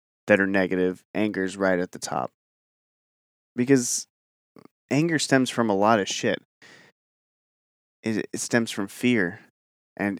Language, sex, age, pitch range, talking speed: English, male, 20-39, 100-120 Hz, 130 wpm